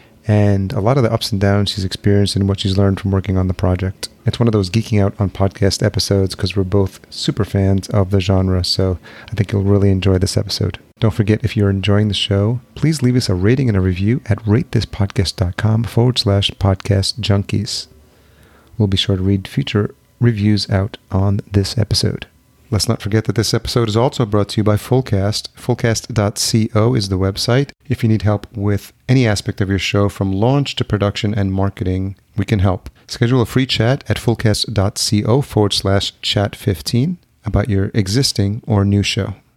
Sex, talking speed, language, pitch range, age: male, 195 wpm, English, 100-115 Hz, 30-49